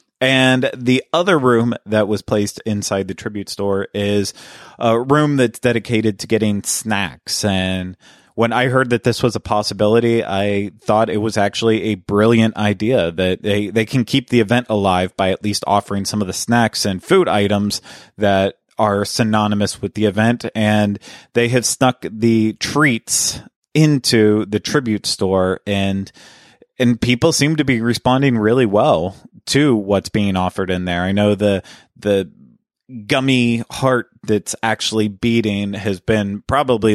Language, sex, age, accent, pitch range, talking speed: English, male, 30-49, American, 100-120 Hz, 160 wpm